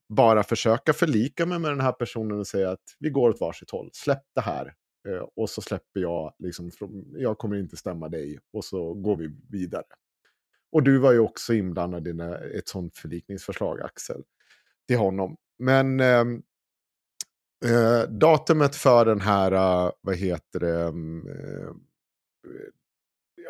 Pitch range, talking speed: 95-130 Hz, 145 wpm